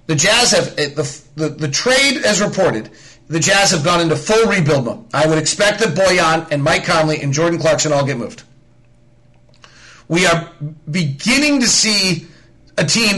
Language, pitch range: English, 160-200 Hz